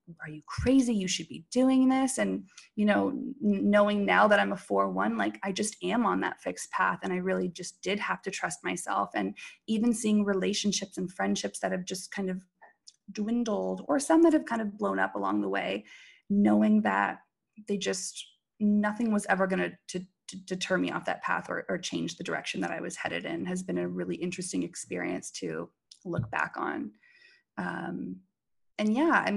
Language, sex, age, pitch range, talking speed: English, female, 20-39, 170-225 Hz, 200 wpm